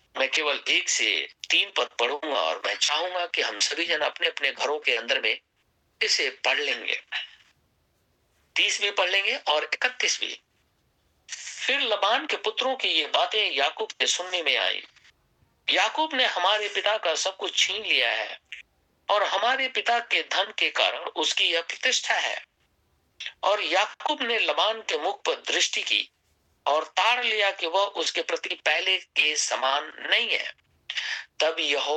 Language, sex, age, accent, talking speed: Hindi, male, 50-69, native, 160 wpm